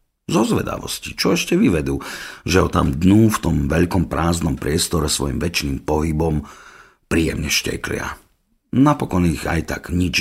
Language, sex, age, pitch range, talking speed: Slovak, male, 50-69, 75-95 Hz, 140 wpm